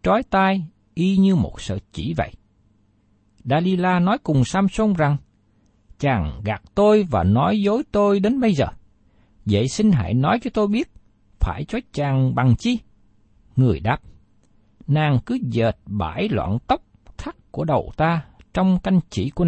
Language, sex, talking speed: Vietnamese, male, 155 wpm